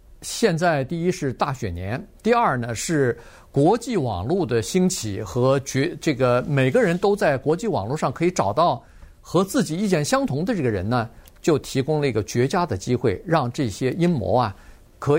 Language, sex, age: Chinese, male, 50-69